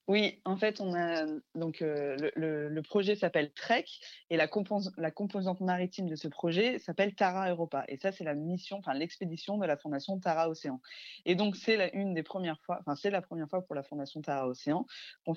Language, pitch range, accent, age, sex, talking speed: French, 145-195 Hz, French, 20-39, female, 220 wpm